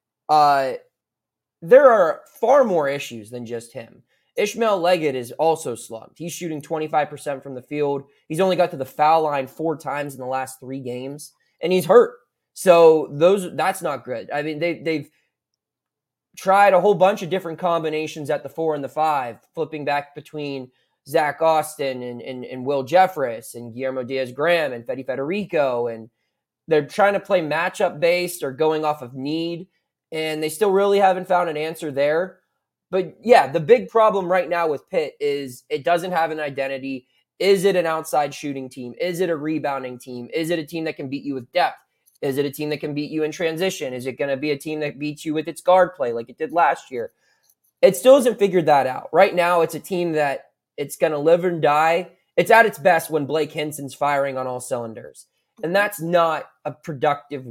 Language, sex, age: English, male, 20-39